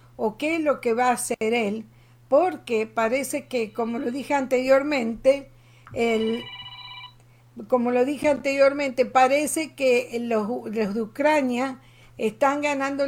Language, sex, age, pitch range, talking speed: Spanish, female, 50-69, 205-260 Hz, 130 wpm